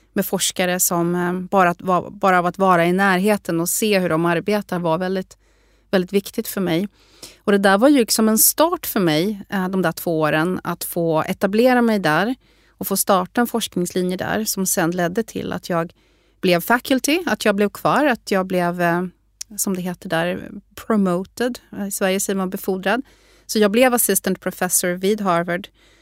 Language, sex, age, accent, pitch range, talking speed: Swedish, female, 30-49, native, 175-210 Hz, 180 wpm